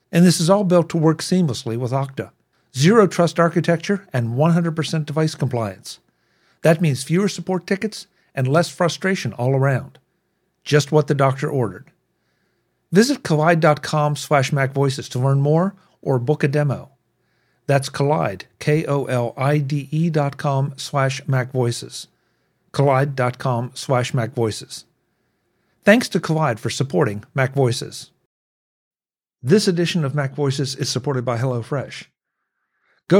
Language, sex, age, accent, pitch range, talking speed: English, male, 50-69, American, 125-165 Hz, 120 wpm